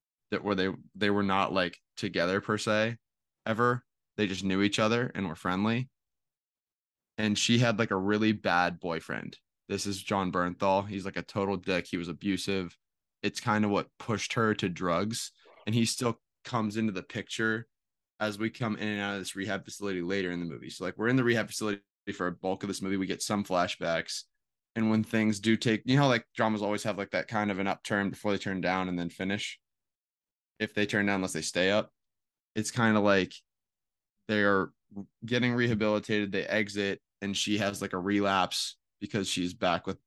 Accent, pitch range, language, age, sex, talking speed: American, 95-110 Hz, English, 20-39, male, 205 wpm